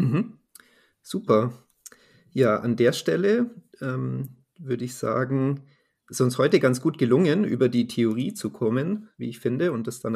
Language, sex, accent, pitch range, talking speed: German, male, German, 110-130 Hz, 155 wpm